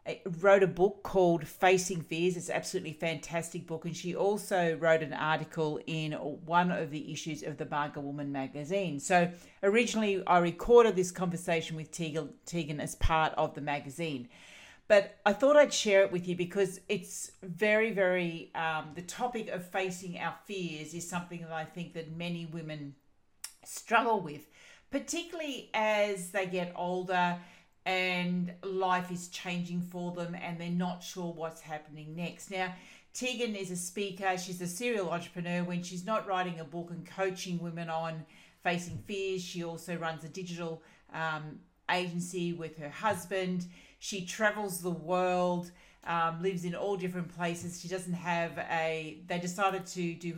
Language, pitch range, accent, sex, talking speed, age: English, 165-190 Hz, Australian, female, 160 wpm, 50-69